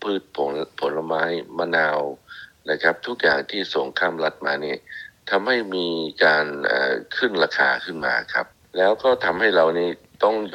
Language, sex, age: Thai, male, 60-79